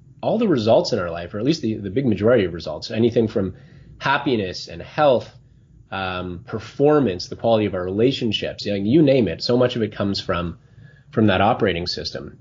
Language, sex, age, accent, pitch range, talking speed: English, male, 30-49, American, 95-130 Hz, 195 wpm